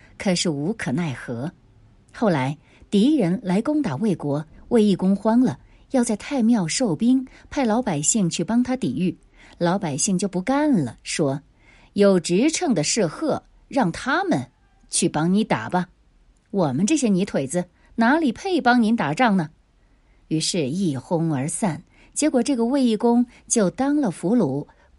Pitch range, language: 155-250 Hz, Chinese